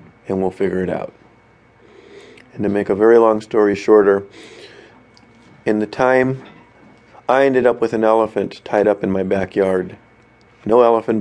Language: English